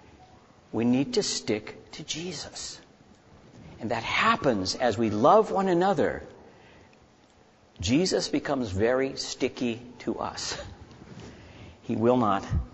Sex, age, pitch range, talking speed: male, 60-79, 110-155 Hz, 110 wpm